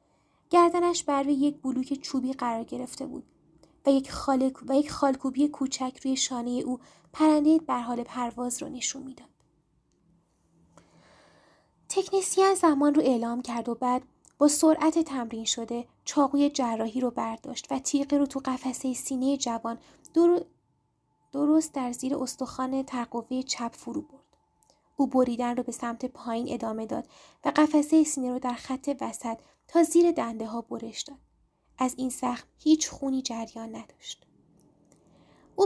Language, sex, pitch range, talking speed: Persian, female, 240-285 Hz, 140 wpm